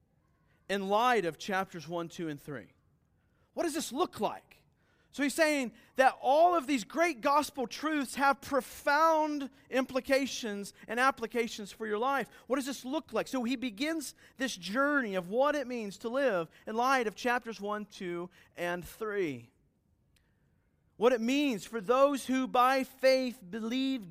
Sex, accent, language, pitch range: male, American, English, 210-270 Hz